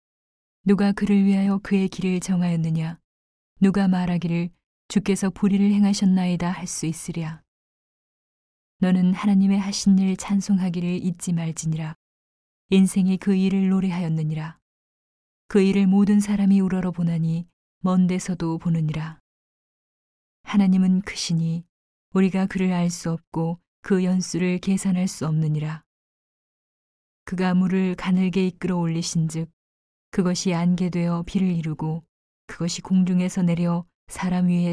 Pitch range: 170-190 Hz